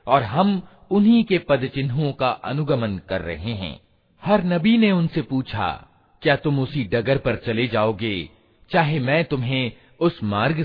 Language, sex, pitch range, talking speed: Hindi, male, 115-170 Hz, 150 wpm